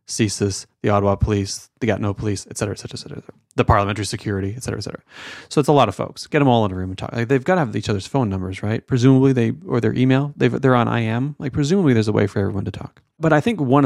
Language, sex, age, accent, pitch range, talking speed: English, male, 30-49, American, 100-125 Hz, 295 wpm